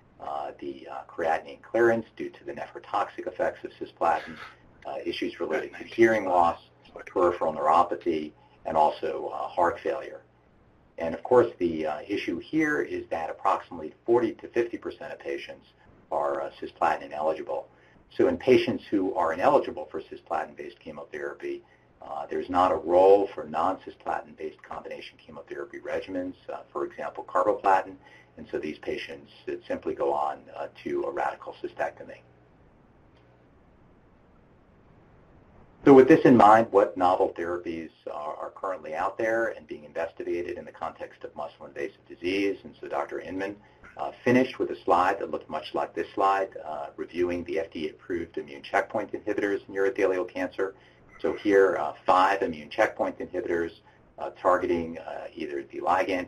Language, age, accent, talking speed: English, 60-79, American, 150 wpm